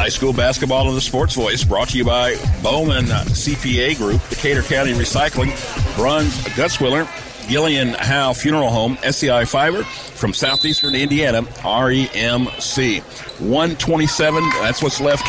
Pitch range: 120-150 Hz